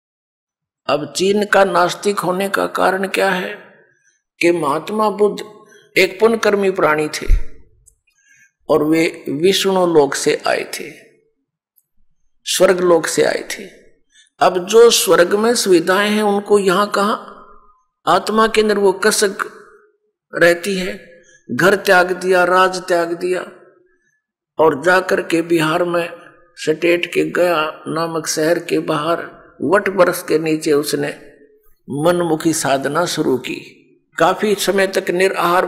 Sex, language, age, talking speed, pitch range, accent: male, Hindi, 50-69, 125 wpm, 170-195 Hz, native